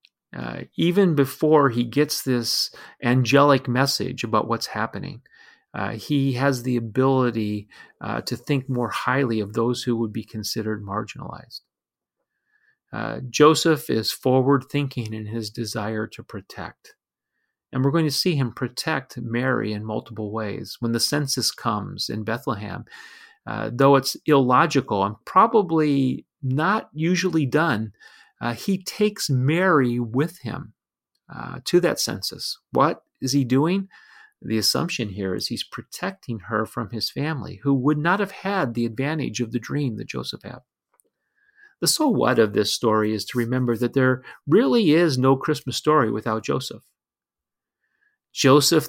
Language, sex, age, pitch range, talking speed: English, male, 40-59, 115-150 Hz, 145 wpm